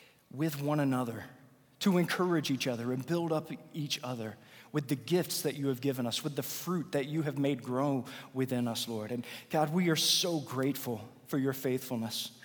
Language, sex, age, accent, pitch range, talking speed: English, male, 40-59, American, 120-155 Hz, 195 wpm